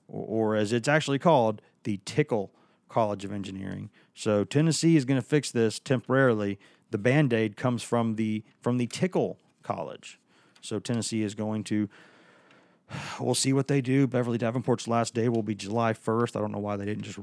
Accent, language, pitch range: American, English, 105-130 Hz